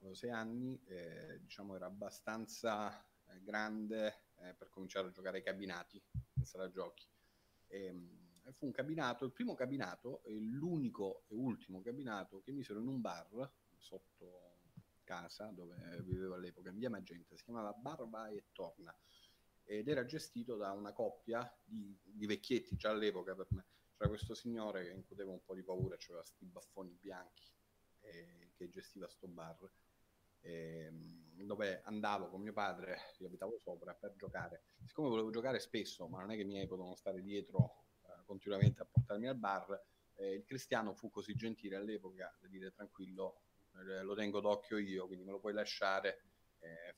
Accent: native